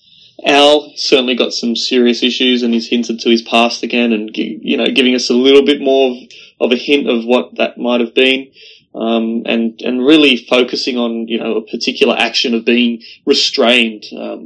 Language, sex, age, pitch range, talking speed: English, male, 20-39, 115-130 Hz, 195 wpm